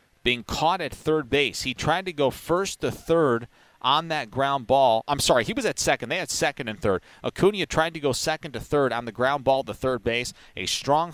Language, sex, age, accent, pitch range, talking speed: English, male, 40-59, American, 120-155 Hz, 230 wpm